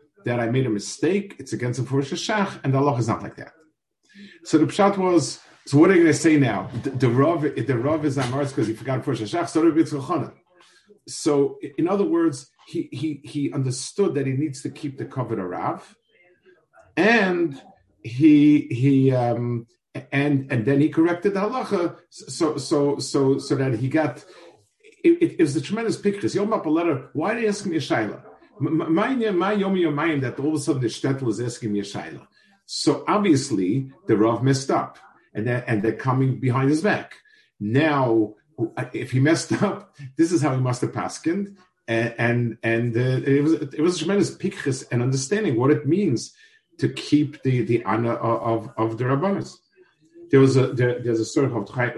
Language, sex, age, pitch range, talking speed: English, male, 50-69, 125-165 Hz, 175 wpm